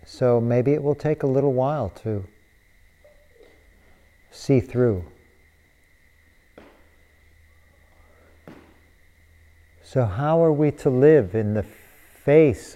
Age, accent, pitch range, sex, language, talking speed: 50-69, American, 80-115 Hz, male, English, 95 wpm